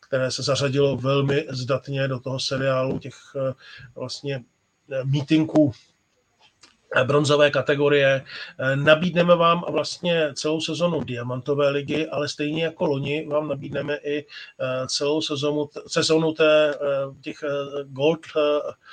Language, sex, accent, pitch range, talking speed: Czech, male, native, 135-150 Hz, 100 wpm